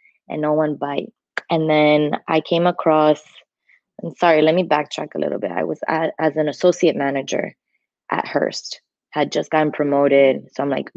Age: 20-39